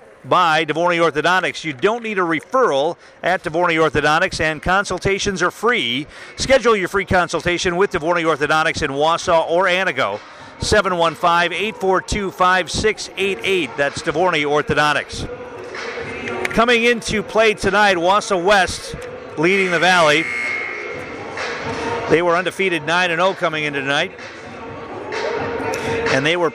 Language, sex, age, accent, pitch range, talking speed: English, male, 50-69, American, 155-185 Hz, 110 wpm